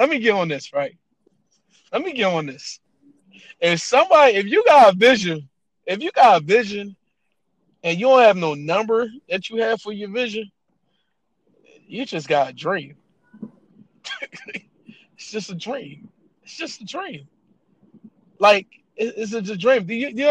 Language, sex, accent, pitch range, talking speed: English, male, American, 180-230 Hz, 165 wpm